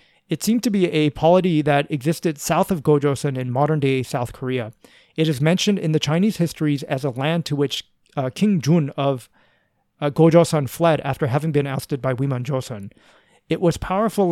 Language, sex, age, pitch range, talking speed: English, male, 30-49, 135-165 Hz, 180 wpm